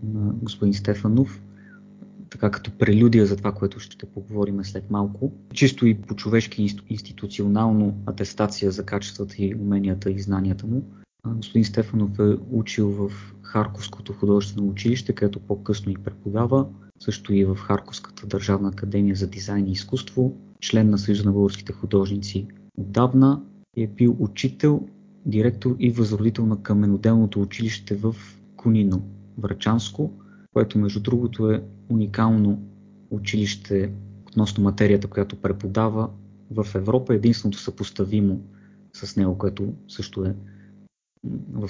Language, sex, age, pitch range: Bulgarian, male, 30-49, 100-110 Hz